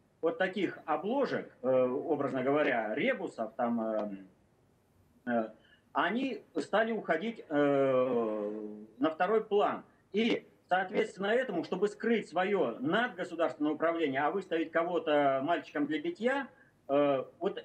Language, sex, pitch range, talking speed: Russian, male, 150-220 Hz, 100 wpm